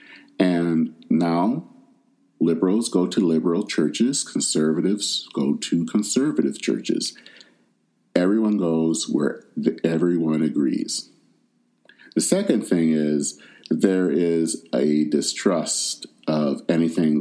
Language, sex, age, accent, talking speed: English, male, 50-69, American, 95 wpm